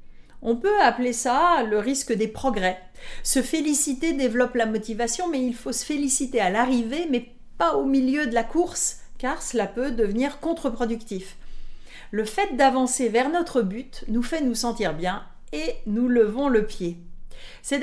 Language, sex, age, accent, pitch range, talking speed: French, female, 40-59, French, 215-275 Hz, 165 wpm